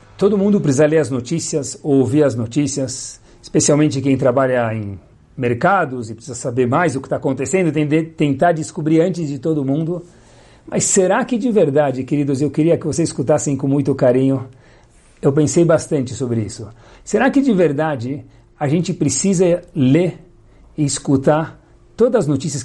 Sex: male